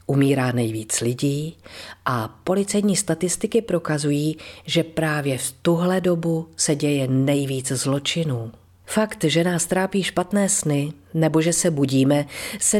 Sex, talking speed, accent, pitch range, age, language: female, 125 wpm, native, 135-190 Hz, 40-59, Czech